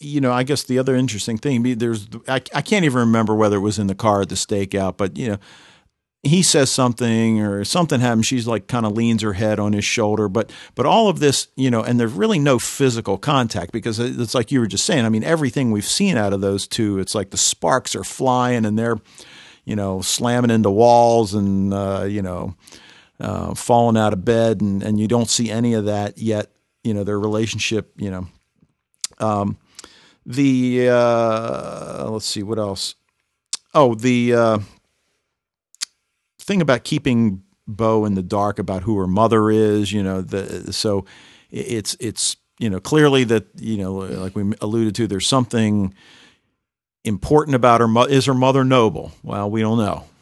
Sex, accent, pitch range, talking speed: male, American, 100-120 Hz, 190 wpm